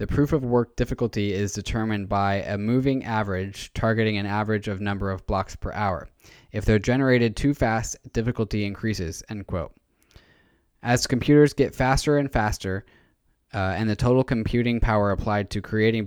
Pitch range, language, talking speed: 100-115 Hz, English, 155 wpm